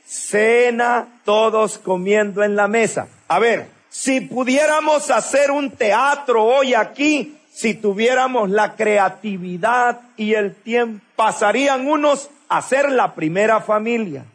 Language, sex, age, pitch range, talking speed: English, male, 50-69, 190-255 Hz, 115 wpm